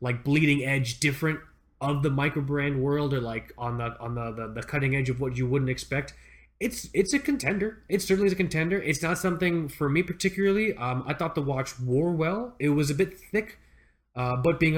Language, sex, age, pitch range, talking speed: English, male, 20-39, 120-150 Hz, 220 wpm